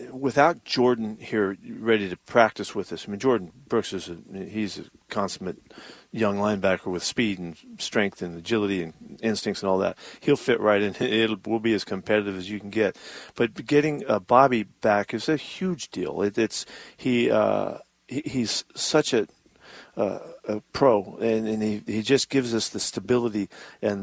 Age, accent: 50-69, American